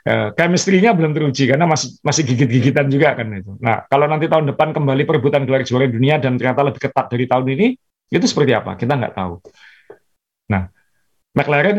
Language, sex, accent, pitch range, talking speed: Indonesian, male, native, 120-145 Hz, 185 wpm